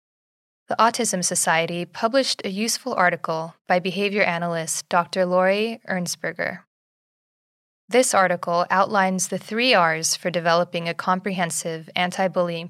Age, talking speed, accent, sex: 20-39, 115 wpm, American, female